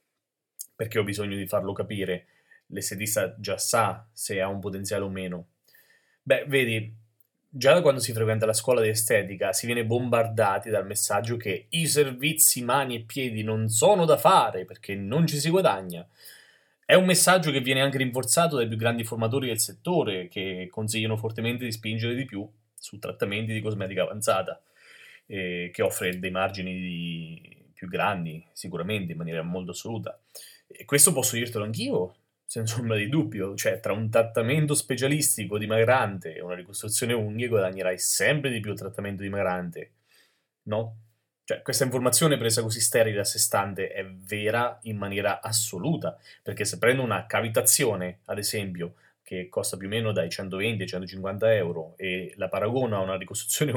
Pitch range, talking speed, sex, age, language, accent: 95-120 Hz, 165 wpm, male, 30-49, Italian, native